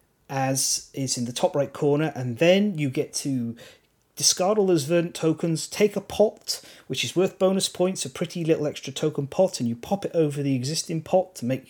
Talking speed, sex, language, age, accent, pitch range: 210 wpm, male, English, 40-59, British, 130-175 Hz